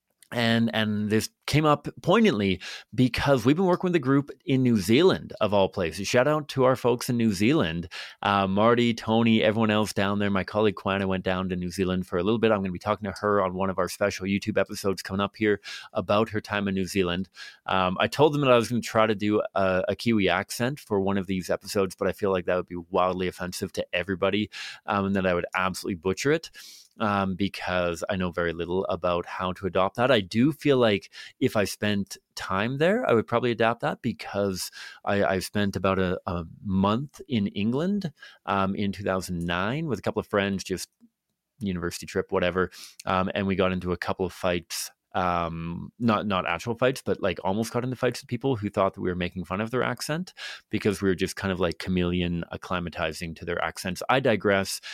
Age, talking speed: 30-49, 220 wpm